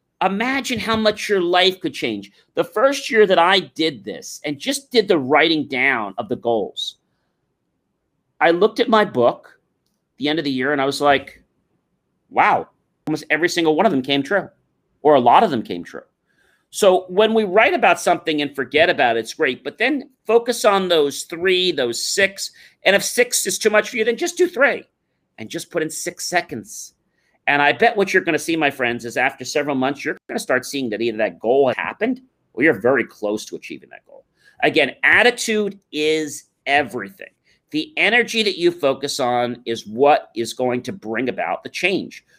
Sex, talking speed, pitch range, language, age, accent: male, 200 wpm, 145-215 Hz, English, 40-59, American